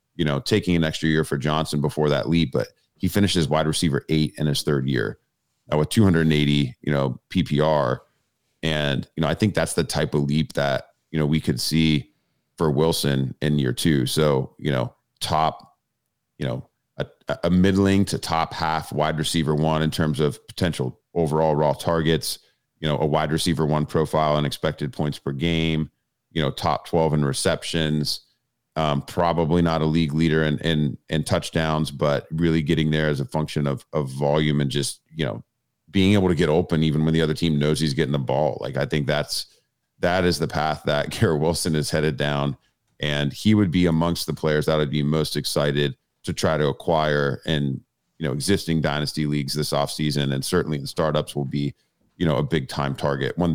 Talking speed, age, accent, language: 200 wpm, 40-59, American, English